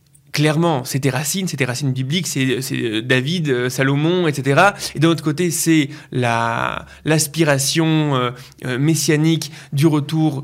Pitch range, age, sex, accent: 130-155 Hz, 20-39, male, French